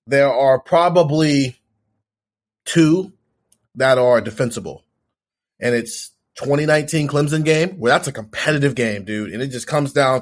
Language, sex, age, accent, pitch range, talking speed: English, male, 30-49, American, 120-155 Hz, 140 wpm